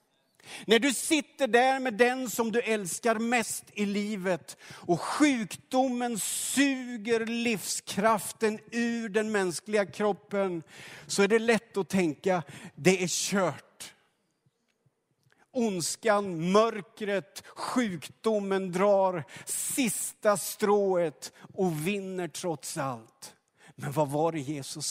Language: Swedish